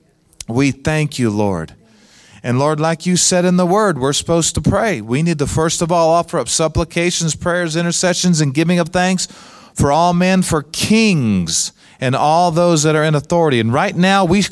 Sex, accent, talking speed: male, American, 195 wpm